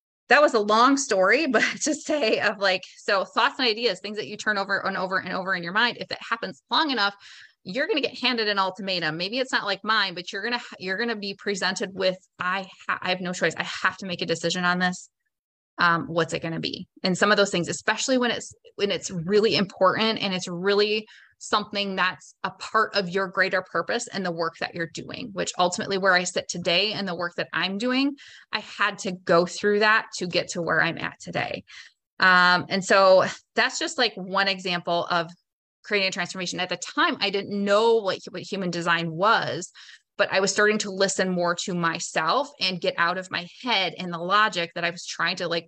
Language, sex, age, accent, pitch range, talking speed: English, female, 20-39, American, 180-215 Hz, 225 wpm